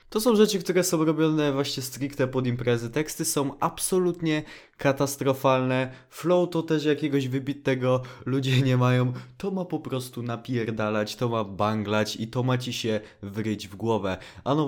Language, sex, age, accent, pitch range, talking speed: Polish, male, 20-39, native, 110-135 Hz, 165 wpm